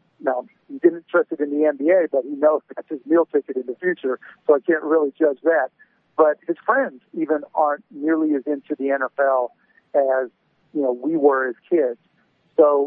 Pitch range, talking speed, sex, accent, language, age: 135-160 Hz, 185 wpm, male, American, English, 50-69